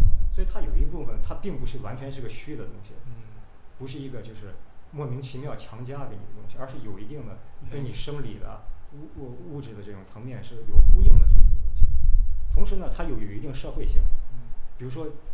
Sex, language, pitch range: male, Chinese, 85-130 Hz